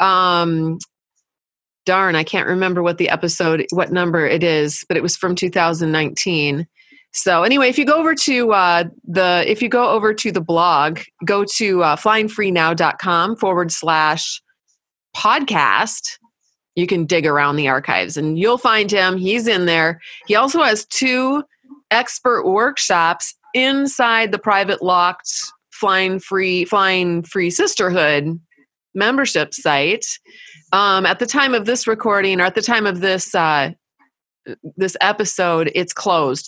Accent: American